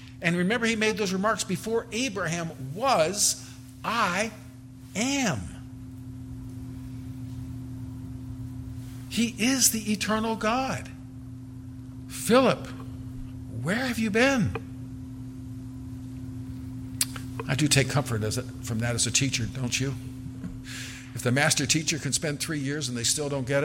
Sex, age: male, 50-69